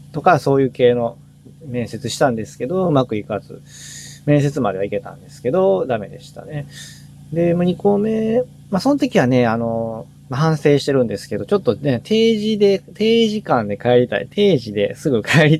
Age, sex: 20-39, male